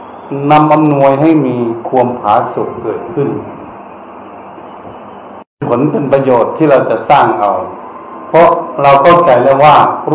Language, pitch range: Thai, 125-155 Hz